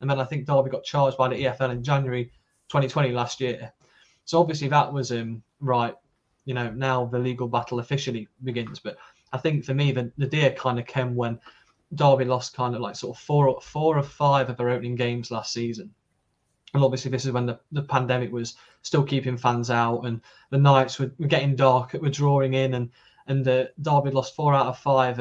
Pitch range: 125-140 Hz